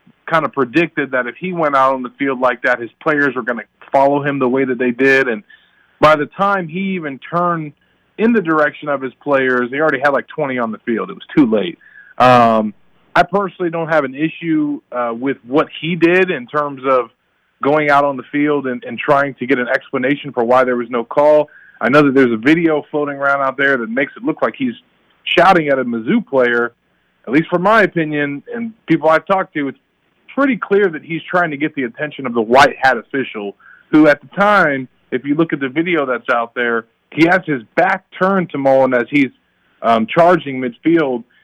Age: 30-49